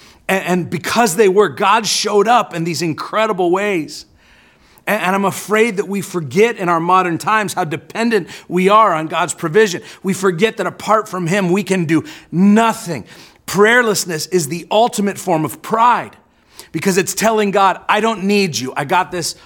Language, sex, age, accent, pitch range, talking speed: English, male, 40-59, American, 120-180 Hz, 175 wpm